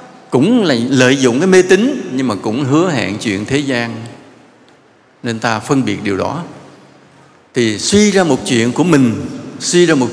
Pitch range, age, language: 115-160 Hz, 70-89, English